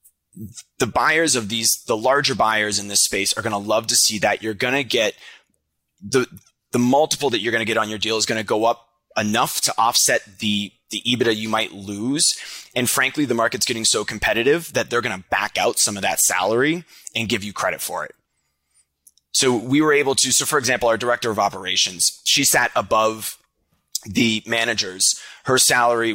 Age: 20-39